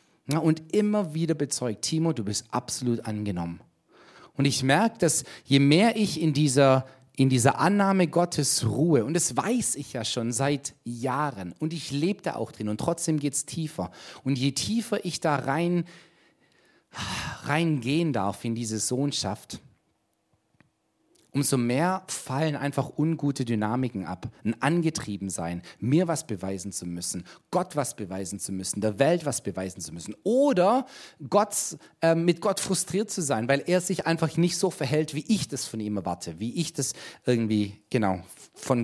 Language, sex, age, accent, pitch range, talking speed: German, male, 40-59, German, 120-170 Hz, 160 wpm